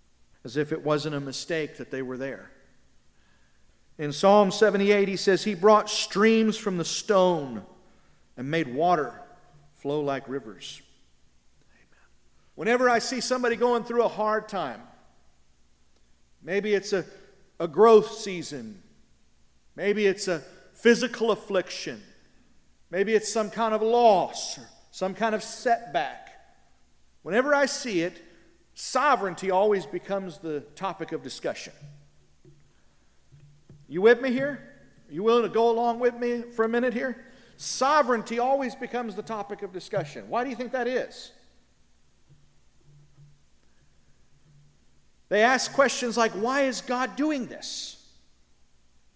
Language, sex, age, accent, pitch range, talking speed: English, male, 50-69, American, 145-230 Hz, 130 wpm